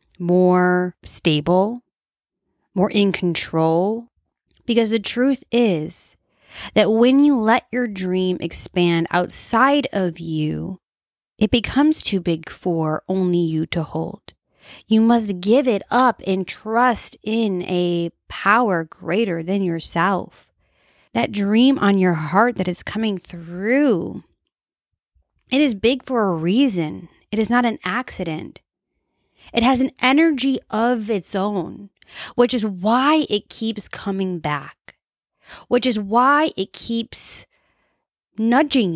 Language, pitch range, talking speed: English, 180-240 Hz, 125 wpm